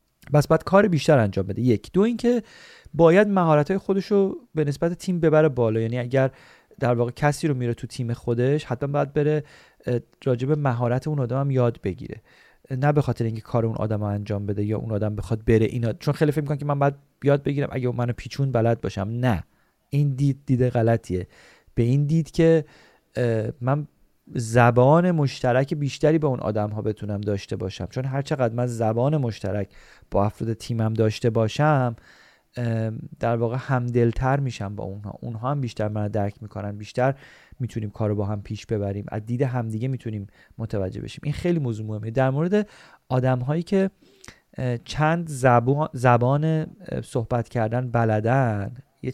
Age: 40-59